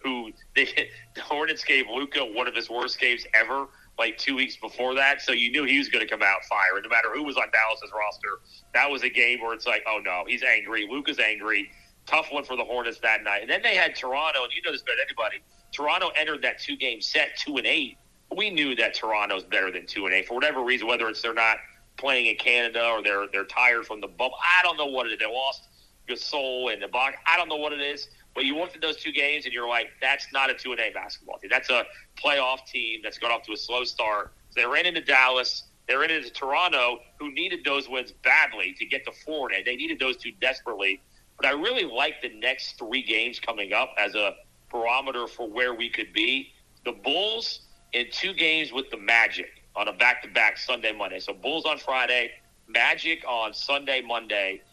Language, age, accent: English, 40-59, American